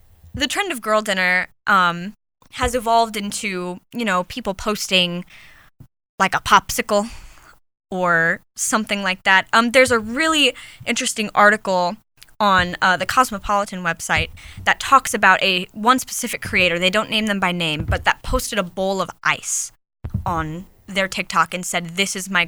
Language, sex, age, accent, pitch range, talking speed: English, female, 10-29, American, 180-220 Hz, 155 wpm